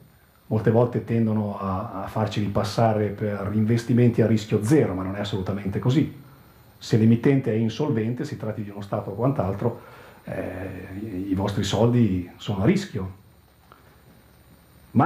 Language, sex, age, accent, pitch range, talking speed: Italian, male, 40-59, native, 105-150 Hz, 140 wpm